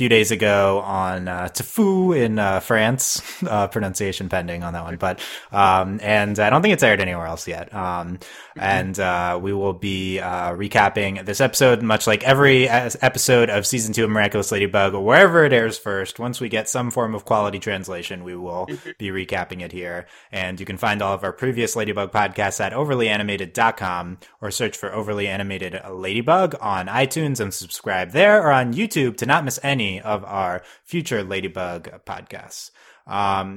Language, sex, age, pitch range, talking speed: English, male, 20-39, 95-120 Hz, 180 wpm